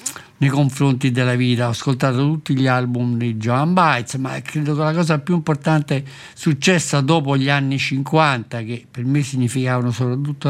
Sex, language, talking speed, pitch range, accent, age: male, Italian, 165 wpm, 125-155 Hz, native, 60-79